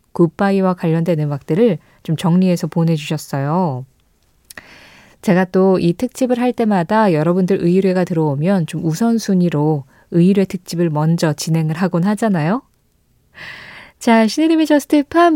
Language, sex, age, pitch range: Korean, female, 20-39, 165-230 Hz